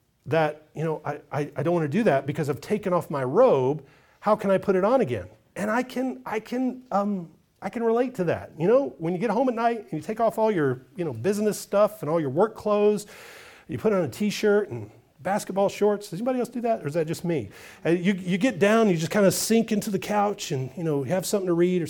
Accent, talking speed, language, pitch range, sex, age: American, 255 wpm, English, 165-230 Hz, male, 40-59